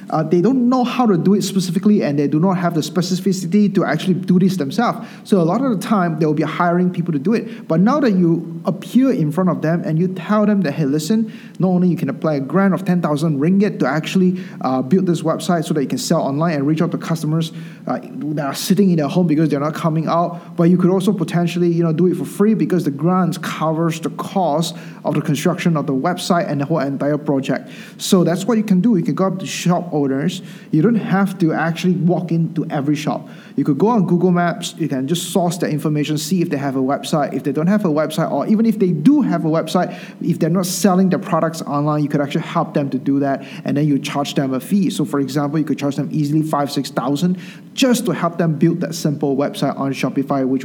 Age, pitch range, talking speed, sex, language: 20-39, 155-190 Hz, 255 wpm, male, English